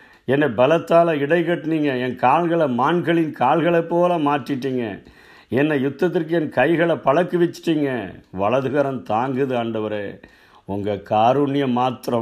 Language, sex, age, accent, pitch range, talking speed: Tamil, male, 50-69, native, 105-140 Hz, 110 wpm